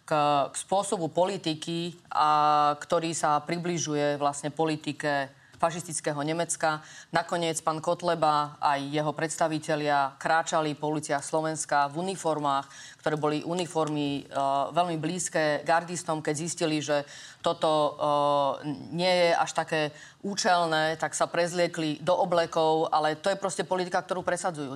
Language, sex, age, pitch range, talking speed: Slovak, female, 30-49, 150-180 Hz, 130 wpm